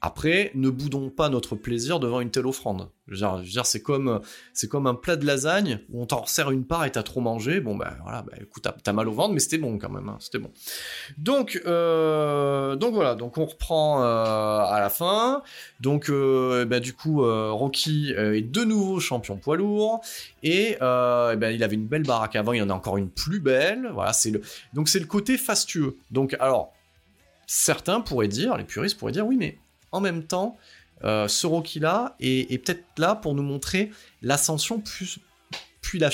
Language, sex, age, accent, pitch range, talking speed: French, male, 30-49, French, 115-160 Hz, 210 wpm